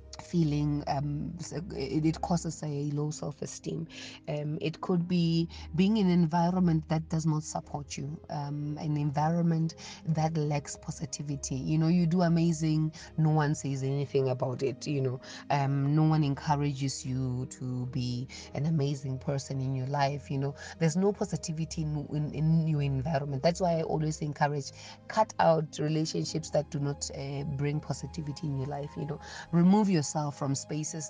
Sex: female